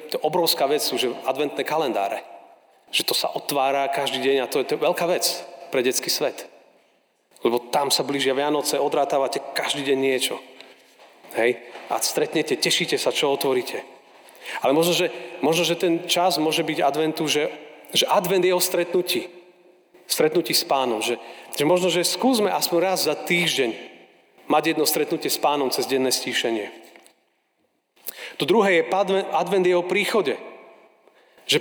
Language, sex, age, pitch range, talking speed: Slovak, male, 40-59, 155-195 Hz, 155 wpm